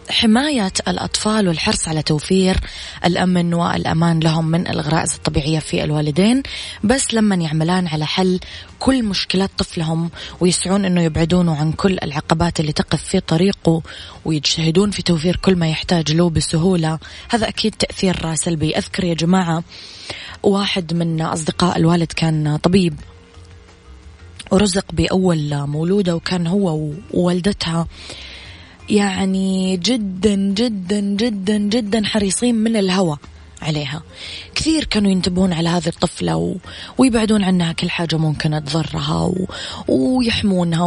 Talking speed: 115 wpm